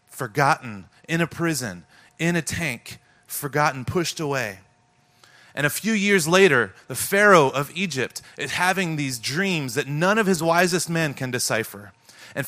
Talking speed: 155 wpm